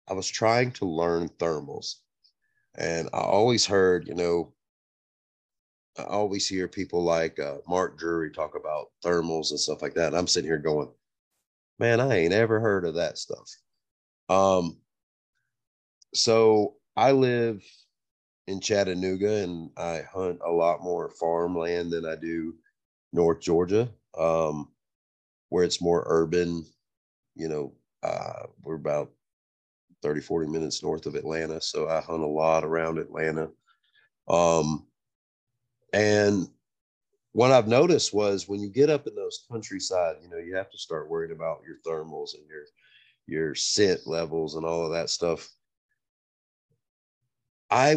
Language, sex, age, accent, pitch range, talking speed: English, male, 30-49, American, 80-110 Hz, 145 wpm